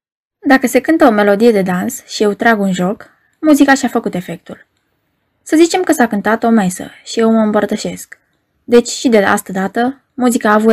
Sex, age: female, 20-39